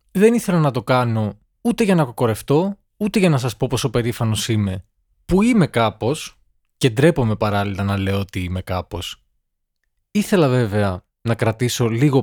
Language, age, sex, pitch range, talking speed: Greek, 20-39, male, 100-135 Hz, 160 wpm